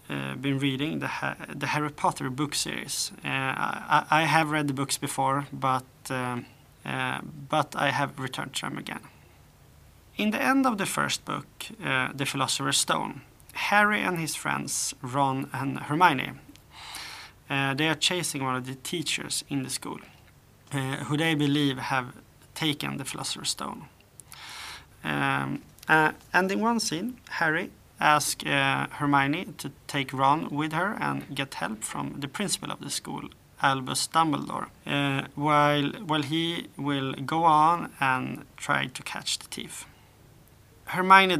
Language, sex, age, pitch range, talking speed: English, male, 30-49, 130-155 Hz, 155 wpm